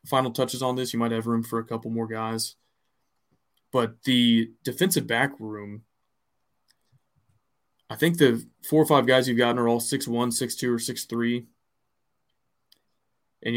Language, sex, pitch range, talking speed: English, male, 110-130 Hz, 150 wpm